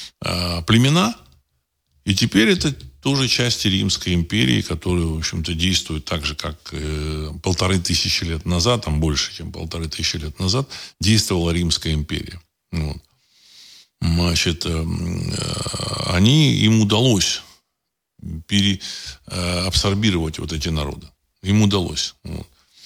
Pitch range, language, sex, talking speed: 80-100 Hz, Russian, male, 120 wpm